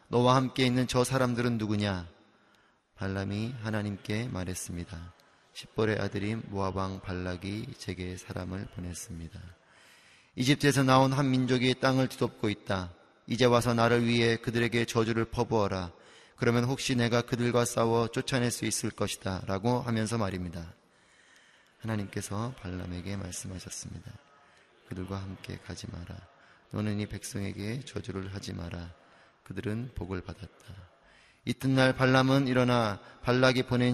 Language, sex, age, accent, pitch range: Korean, male, 30-49, native, 95-120 Hz